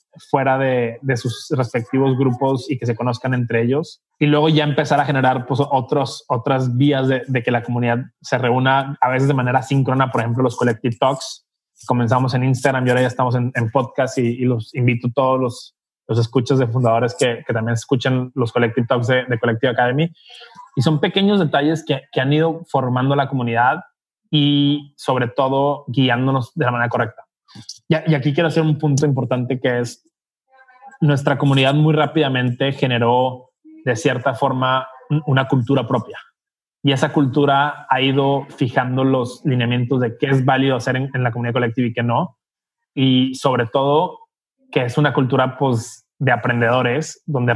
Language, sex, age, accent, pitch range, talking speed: Spanish, male, 20-39, Mexican, 125-145 Hz, 180 wpm